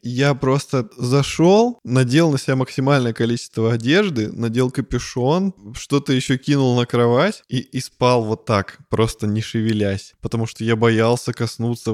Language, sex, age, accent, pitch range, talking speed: Russian, male, 20-39, native, 110-135 Hz, 145 wpm